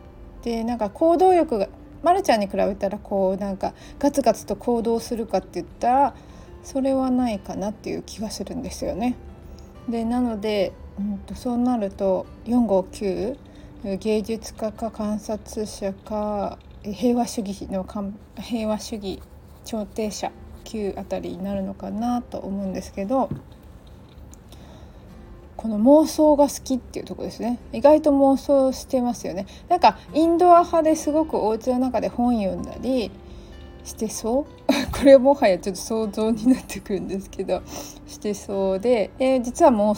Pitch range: 200-255 Hz